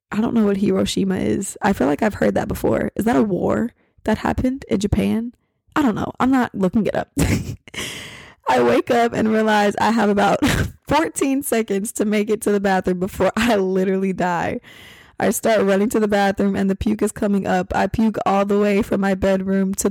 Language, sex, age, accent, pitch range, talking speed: English, female, 20-39, American, 200-260 Hz, 210 wpm